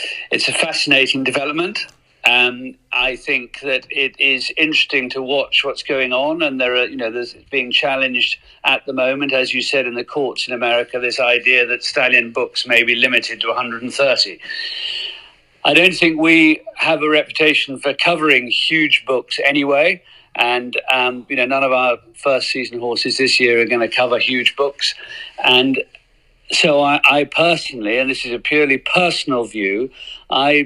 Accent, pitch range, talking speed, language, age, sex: British, 125-150 Hz, 170 wpm, English, 50-69, male